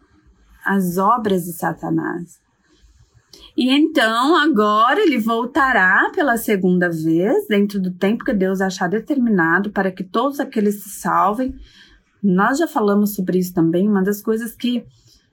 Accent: Brazilian